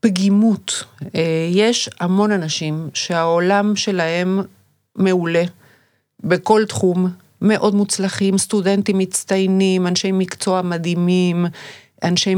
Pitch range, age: 170-215 Hz, 50-69